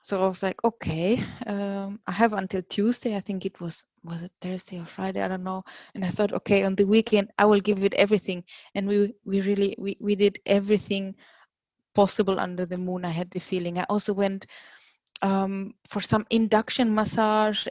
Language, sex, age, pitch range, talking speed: English, female, 20-39, 195-225 Hz, 195 wpm